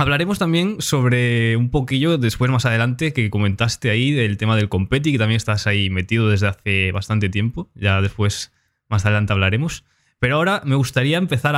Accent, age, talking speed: Spanish, 20-39, 175 wpm